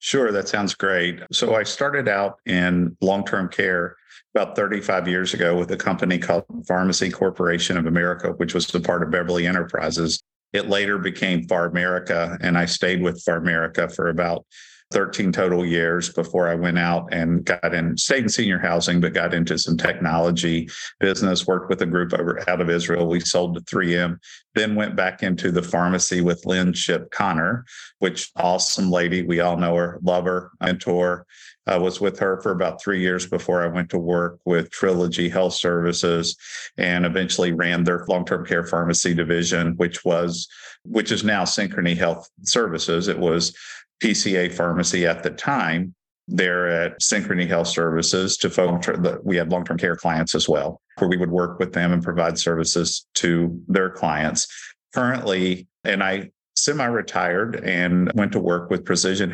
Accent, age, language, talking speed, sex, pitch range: American, 50-69, English, 175 wpm, male, 85-90 Hz